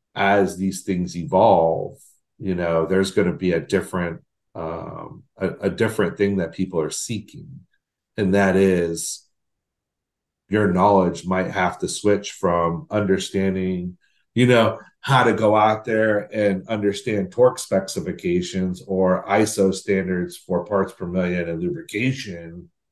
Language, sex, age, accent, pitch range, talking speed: English, male, 40-59, American, 90-110 Hz, 135 wpm